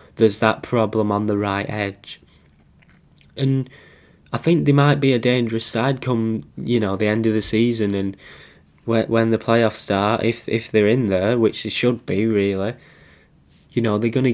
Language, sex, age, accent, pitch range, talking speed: English, male, 10-29, British, 110-135 Hz, 180 wpm